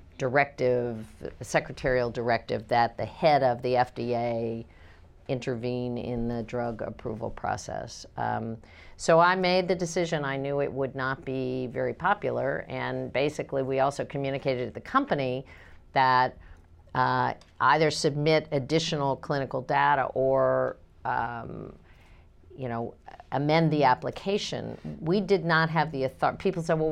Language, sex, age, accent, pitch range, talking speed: English, female, 50-69, American, 120-150 Hz, 130 wpm